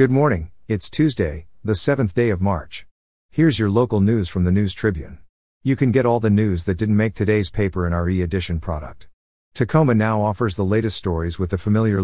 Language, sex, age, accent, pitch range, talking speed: English, male, 50-69, American, 90-110 Hz, 205 wpm